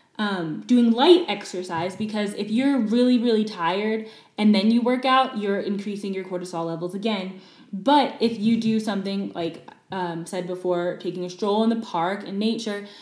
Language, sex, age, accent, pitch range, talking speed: English, female, 10-29, American, 185-250 Hz, 175 wpm